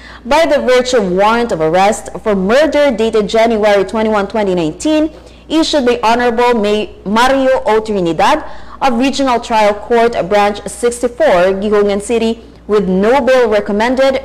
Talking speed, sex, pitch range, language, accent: 135 wpm, female, 200-245 Hz, English, Filipino